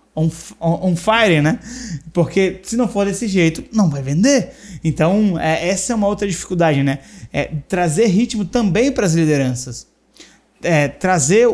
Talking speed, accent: 145 wpm, Brazilian